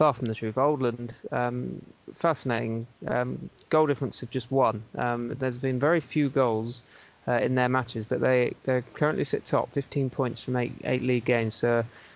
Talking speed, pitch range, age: 190 wpm, 120-135 Hz, 20-39